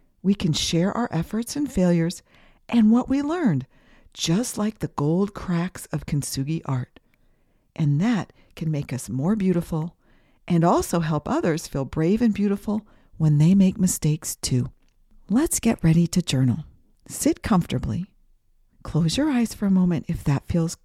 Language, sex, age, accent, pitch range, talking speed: English, female, 50-69, American, 135-210 Hz, 160 wpm